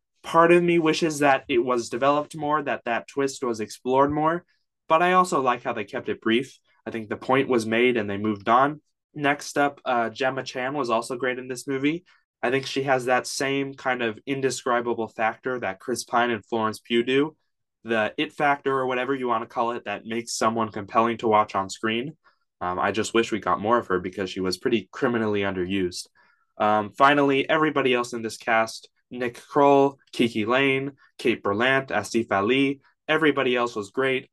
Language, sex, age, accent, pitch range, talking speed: English, male, 20-39, American, 115-140 Hz, 200 wpm